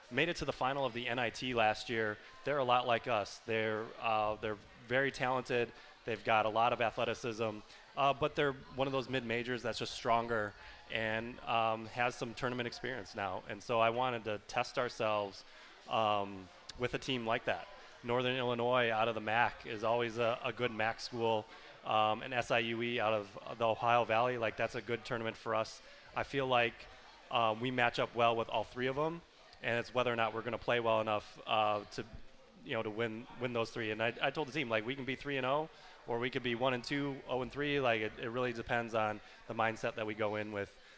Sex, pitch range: male, 110-125 Hz